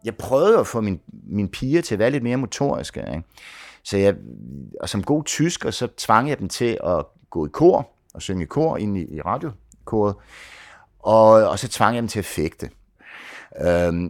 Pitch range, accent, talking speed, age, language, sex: 90-130 Hz, Danish, 195 wpm, 60-79, English, male